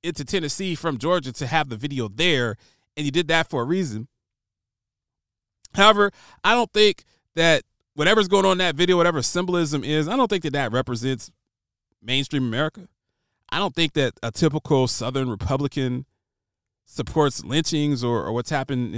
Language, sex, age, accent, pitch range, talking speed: English, male, 30-49, American, 125-190 Hz, 165 wpm